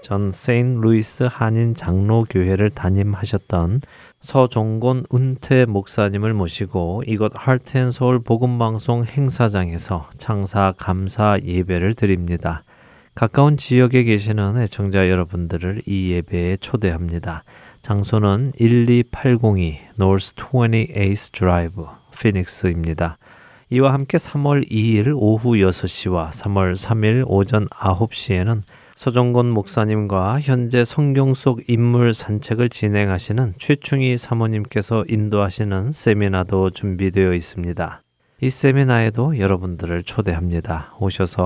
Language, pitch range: Korean, 95-120 Hz